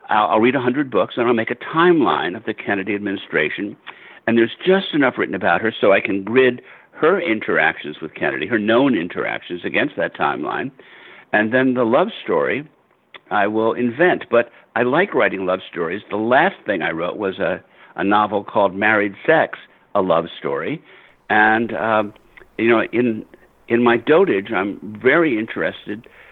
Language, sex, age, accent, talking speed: English, male, 60-79, American, 170 wpm